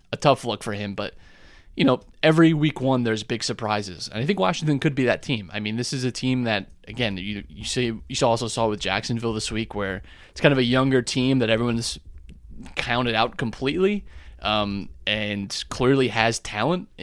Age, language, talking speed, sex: 20-39, English, 200 wpm, male